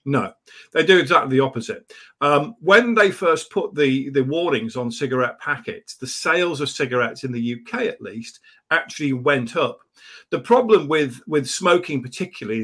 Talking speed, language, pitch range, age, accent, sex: 165 wpm, English, 130-180 Hz, 50-69, British, male